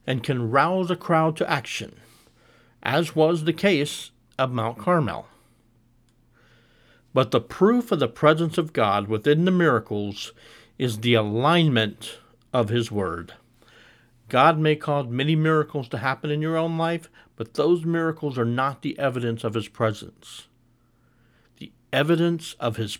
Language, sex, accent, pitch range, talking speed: English, male, American, 115-160 Hz, 145 wpm